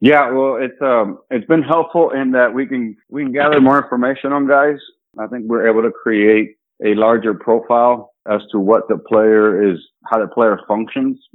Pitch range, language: 95-120 Hz, English